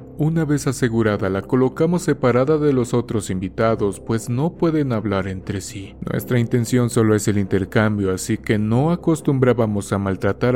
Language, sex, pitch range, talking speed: Spanish, male, 100-135 Hz, 160 wpm